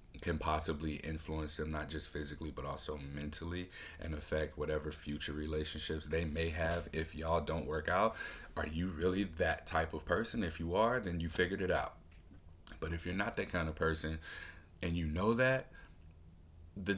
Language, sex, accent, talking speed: English, male, American, 180 wpm